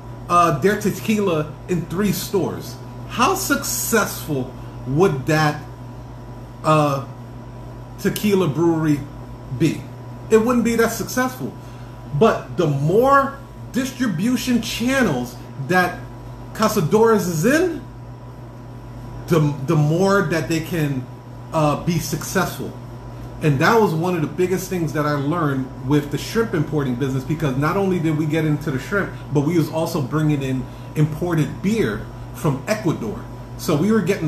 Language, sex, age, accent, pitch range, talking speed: English, male, 40-59, American, 125-170 Hz, 135 wpm